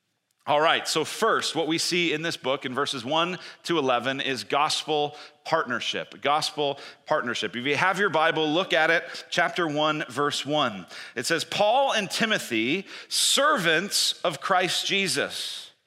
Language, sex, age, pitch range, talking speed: English, male, 40-59, 115-155 Hz, 155 wpm